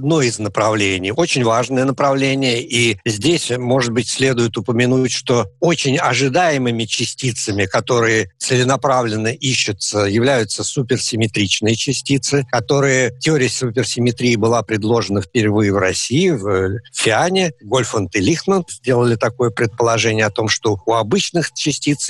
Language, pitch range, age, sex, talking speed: Russian, 115-140 Hz, 50-69, male, 120 wpm